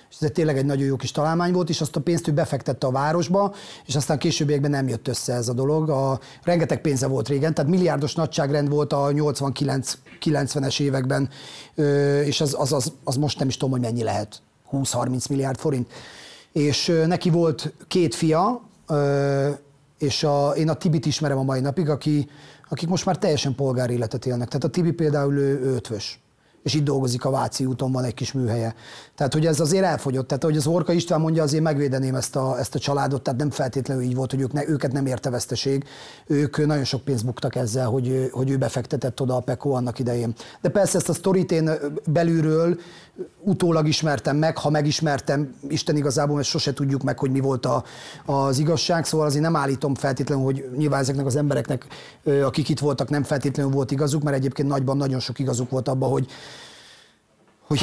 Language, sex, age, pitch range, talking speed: Hungarian, male, 30-49, 135-155 Hz, 190 wpm